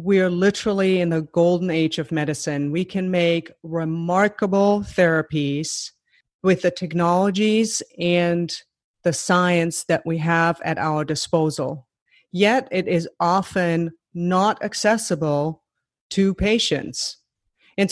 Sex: female